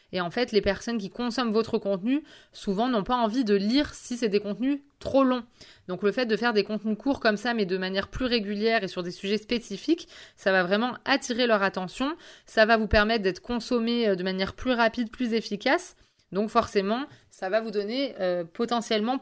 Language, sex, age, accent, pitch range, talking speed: French, female, 20-39, French, 200-240 Hz, 210 wpm